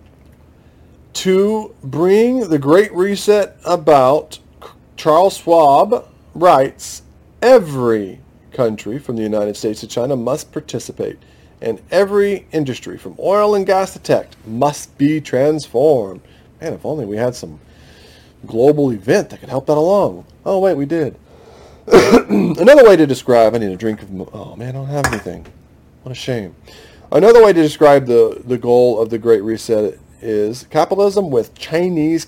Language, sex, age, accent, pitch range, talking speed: English, male, 40-59, American, 110-155 Hz, 150 wpm